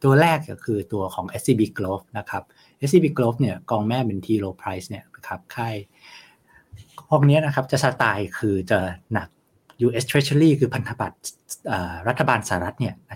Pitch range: 100-135 Hz